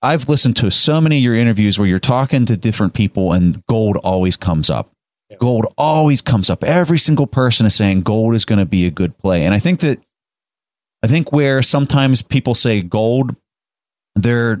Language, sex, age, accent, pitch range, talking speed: English, male, 30-49, American, 95-125 Hz, 195 wpm